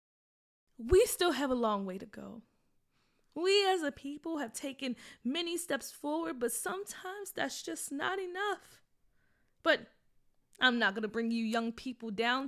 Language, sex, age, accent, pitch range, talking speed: English, female, 20-39, American, 260-345 Hz, 155 wpm